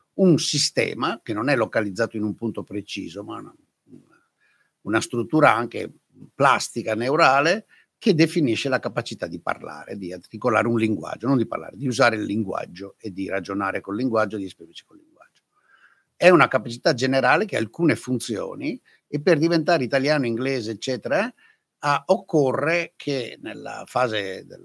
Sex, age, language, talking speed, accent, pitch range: male, 60-79, Italian, 155 wpm, native, 110-150 Hz